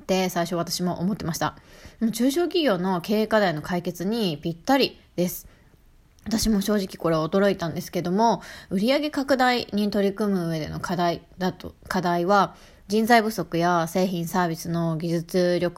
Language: Japanese